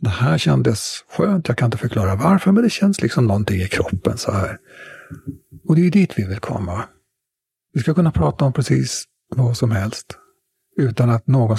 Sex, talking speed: male, 195 wpm